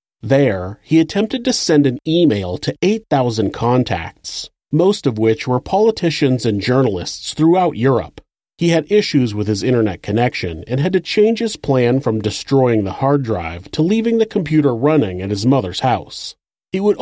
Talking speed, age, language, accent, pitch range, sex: 170 wpm, 40-59, English, American, 110-160 Hz, male